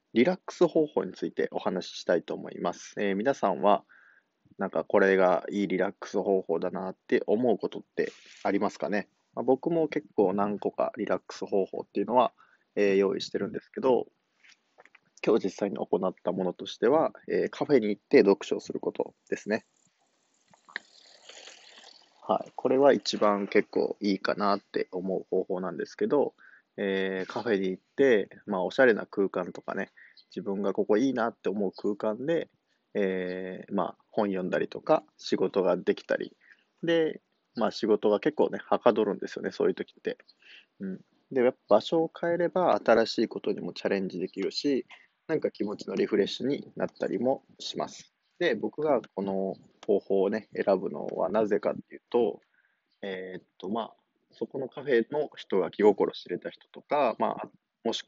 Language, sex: Japanese, male